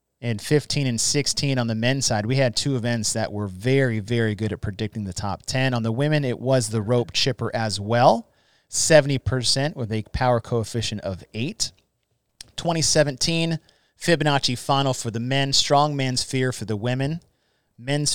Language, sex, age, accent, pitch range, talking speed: English, male, 30-49, American, 110-140 Hz, 170 wpm